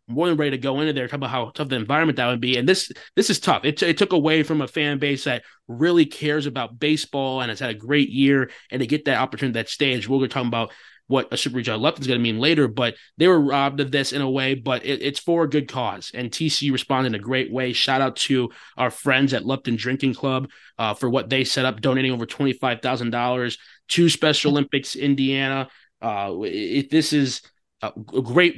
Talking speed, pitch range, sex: 235 wpm, 120-140 Hz, male